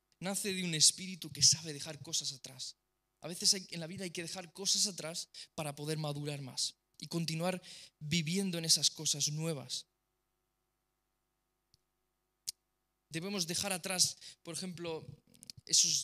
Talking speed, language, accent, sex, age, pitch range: 140 wpm, Romanian, Spanish, male, 20-39, 140-170 Hz